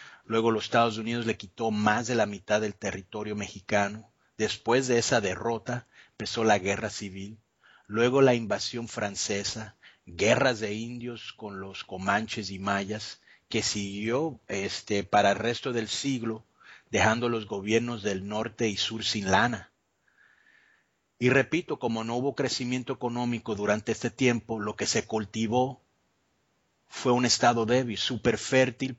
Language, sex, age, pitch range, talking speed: English, male, 40-59, 105-120 Hz, 145 wpm